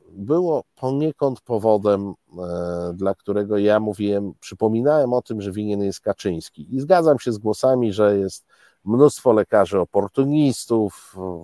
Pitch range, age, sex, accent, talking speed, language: 100-150 Hz, 50-69, male, native, 125 wpm, Polish